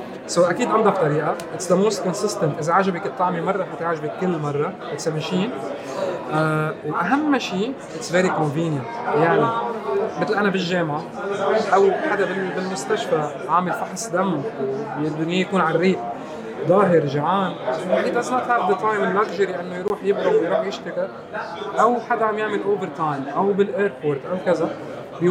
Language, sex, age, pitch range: Arabic, male, 30-49, 155-190 Hz